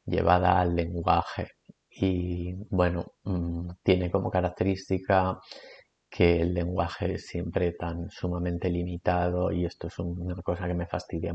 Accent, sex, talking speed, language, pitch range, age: Spanish, male, 125 wpm, Spanish, 85-95 Hz, 30-49